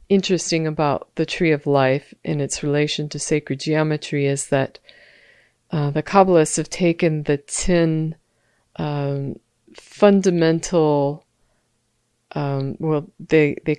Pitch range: 140-170 Hz